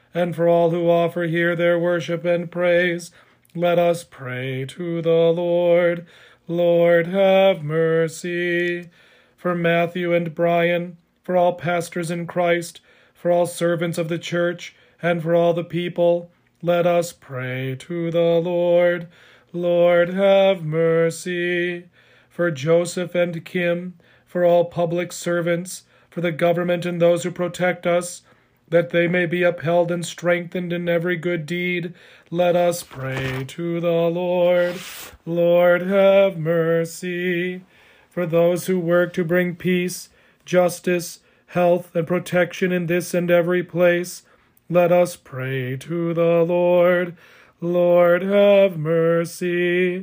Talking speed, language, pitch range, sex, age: 130 wpm, English, 170-180 Hz, male, 40-59